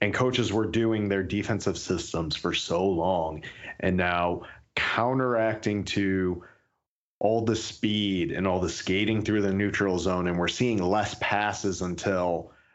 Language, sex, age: English, male, 30-49